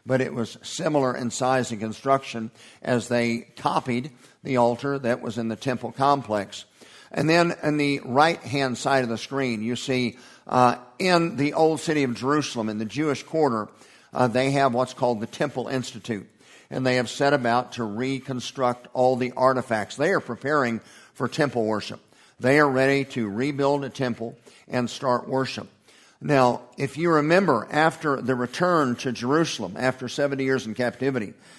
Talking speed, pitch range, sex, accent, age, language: 170 wpm, 120-145 Hz, male, American, 50-69, English